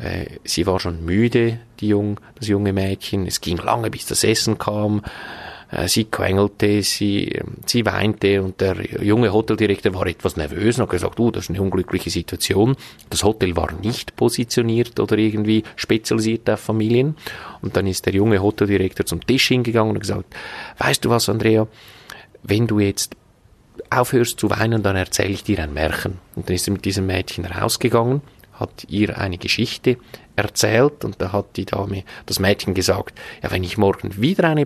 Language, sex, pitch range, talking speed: German, male, 95-115 Hz, 175 wpm